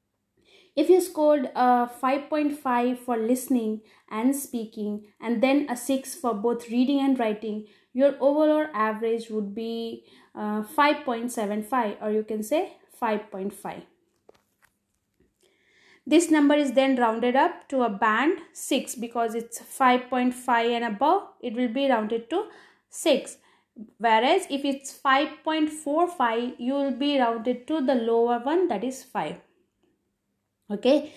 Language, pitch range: English, 230-280 Hz